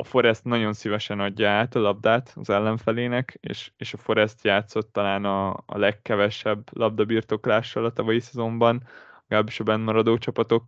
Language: Hungarian